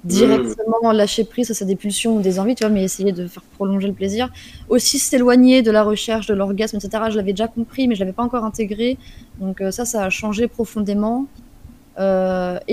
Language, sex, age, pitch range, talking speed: French, female, 20-39, 190-235 Hz, 210 wpm